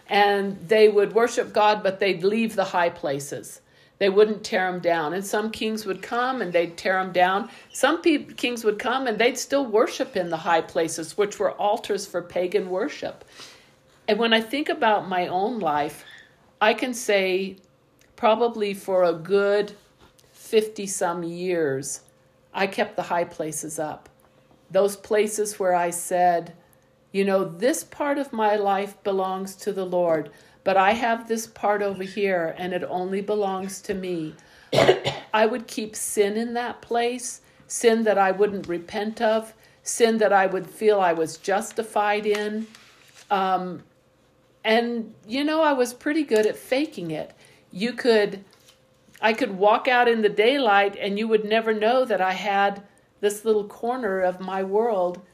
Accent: American